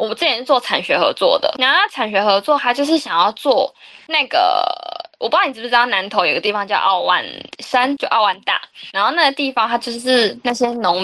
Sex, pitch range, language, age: female, 195-275 Hz, Chinese, 10-29